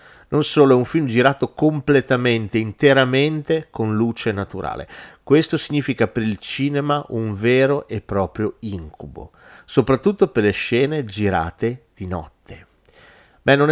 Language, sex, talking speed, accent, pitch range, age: Italian, male, 130 wpm, native, 100-140 Hz, 40-59